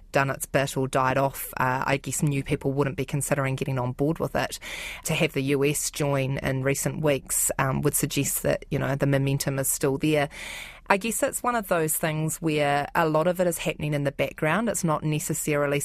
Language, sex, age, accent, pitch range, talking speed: English, female, 20-39, Australian, 140-170 Hz, 220 wpm